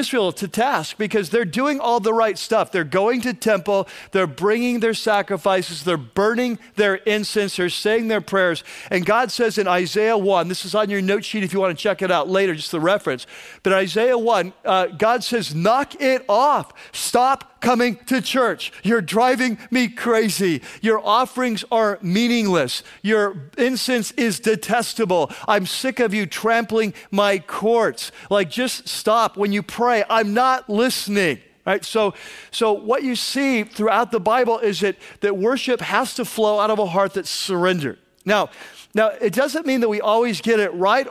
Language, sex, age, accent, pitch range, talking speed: English, male, 40-59, American, 190-230 Hz, 180 wpm